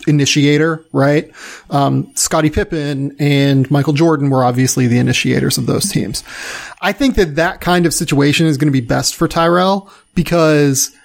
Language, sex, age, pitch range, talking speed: English, male, 30-49, 140-170 Hz, 165 wpm